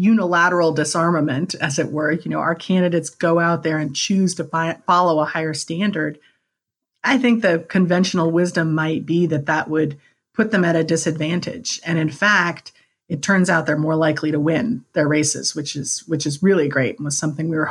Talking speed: 200 wpm